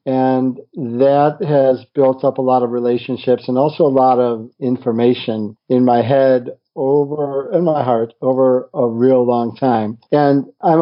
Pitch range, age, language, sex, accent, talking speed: 120-140 Hz, 50-69, English, male, American, 160 wpm